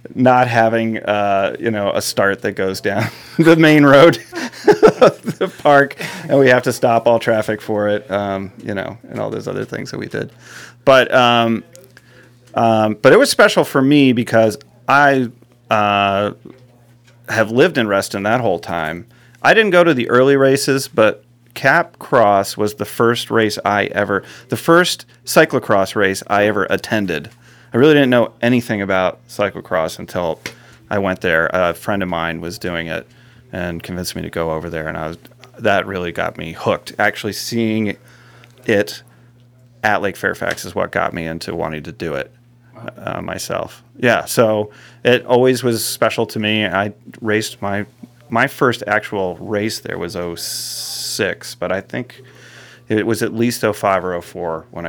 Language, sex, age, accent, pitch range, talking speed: English, male, 30-49, American, 100-125 Hz, 170 wpm